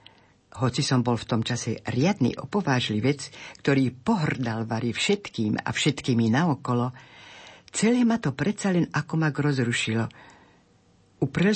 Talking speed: 125 wpm